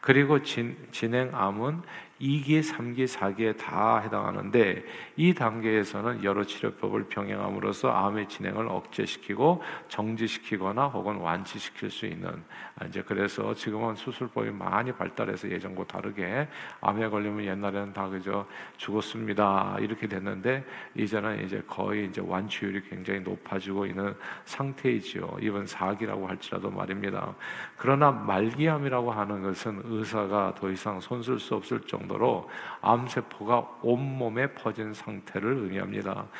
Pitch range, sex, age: 100-125 Hz, male, 50-69